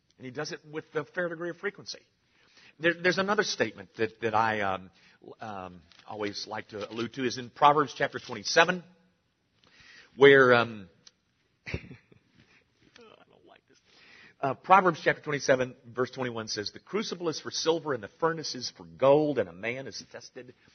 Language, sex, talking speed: English, male, 170 wpm